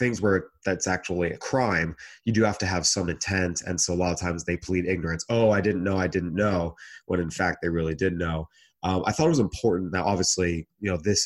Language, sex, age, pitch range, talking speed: English, male, 30-49, 90-105 Hz, 250 wpm